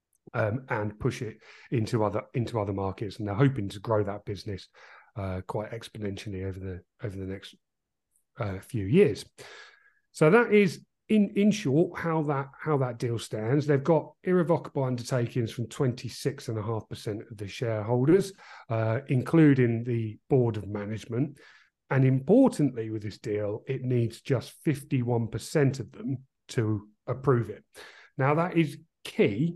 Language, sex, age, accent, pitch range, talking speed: English, male, 40-59, British, 110-145 Hz, 155 wpm